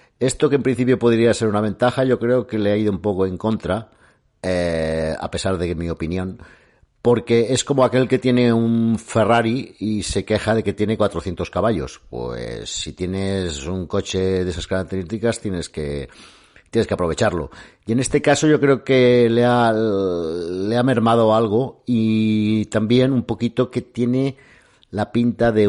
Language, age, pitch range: Spanish, 50-69, 90-115 Hz